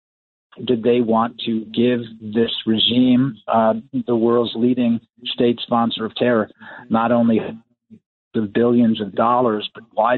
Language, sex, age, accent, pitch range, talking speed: English, male, 50-69, American, 110-125 Hz, 135 wpm